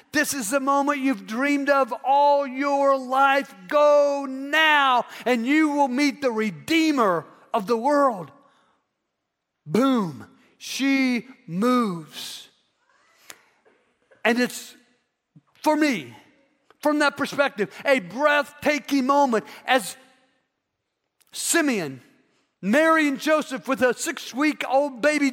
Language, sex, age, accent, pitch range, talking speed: English, male, 50-69, American, 220-280 Hz, 100 wpm